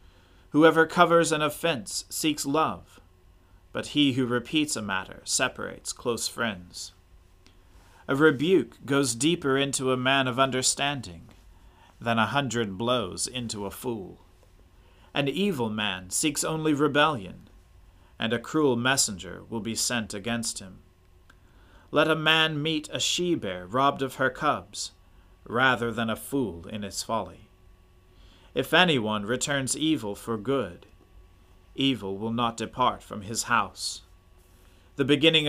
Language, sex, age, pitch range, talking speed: English, male, 40-59, 95-140 Hz, 130 wpm